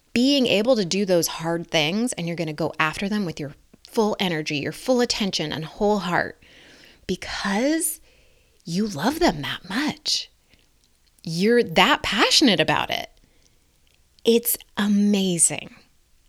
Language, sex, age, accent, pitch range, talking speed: English, female, 20-39, American, 160-215 Hz, 135 wpm